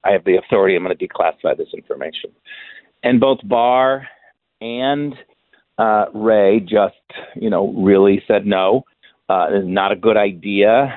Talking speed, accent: 150 wpm, American